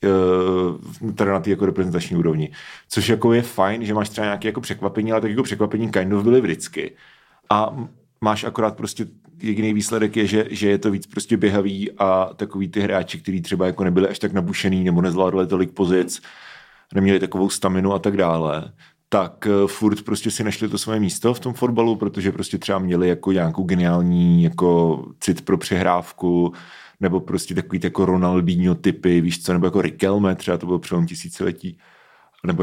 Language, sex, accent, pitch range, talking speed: Czech, male, native, 90-105 Hz, 180 wpm